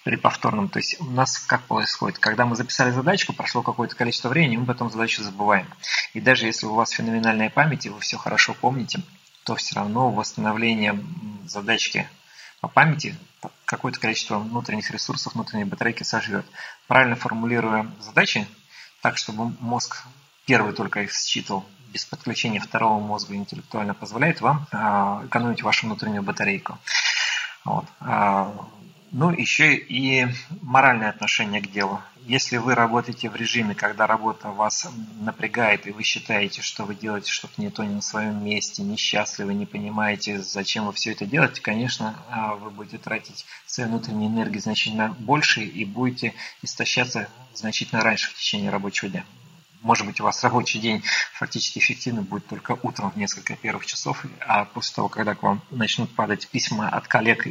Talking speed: 155 wpm